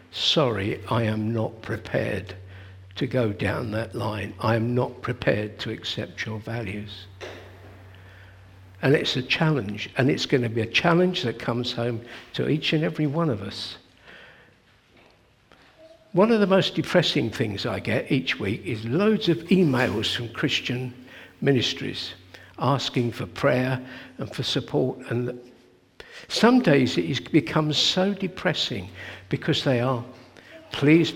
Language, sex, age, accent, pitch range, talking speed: English, male, 60-79, British, 105-145 Hz, 140 wpm